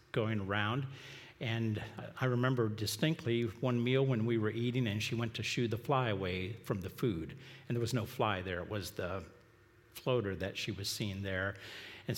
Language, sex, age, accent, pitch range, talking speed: English, male, 50-69, American, 105-130 Hz, 190 wpm